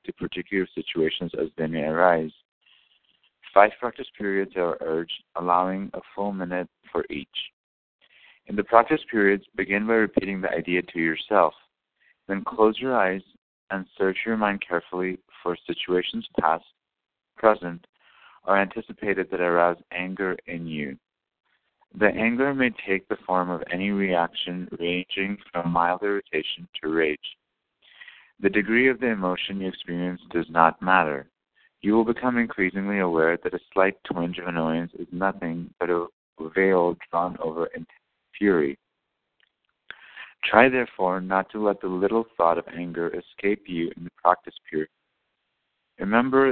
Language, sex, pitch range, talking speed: English, male, 85-100 Hz, 145 wpm